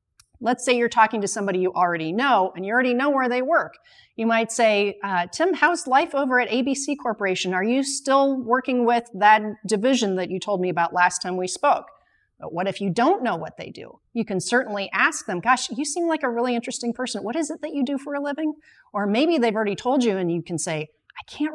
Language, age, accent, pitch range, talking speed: English, 40-59, American, 180-255 Hz, 240 wpm